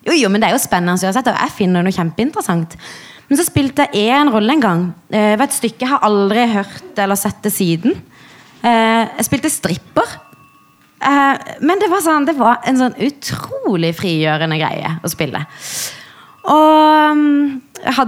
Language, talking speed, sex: English, 170 wpm, female